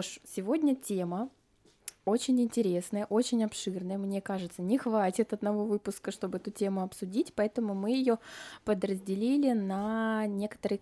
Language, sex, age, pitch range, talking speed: Russian, female, 20-39, 180-220 Hz, 120 wpm